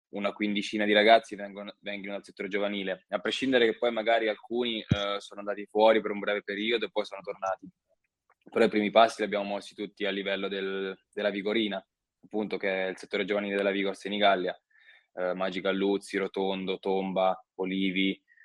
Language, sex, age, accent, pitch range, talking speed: Italian, male, 20-39, native, 95-105 Hz, 180 wpm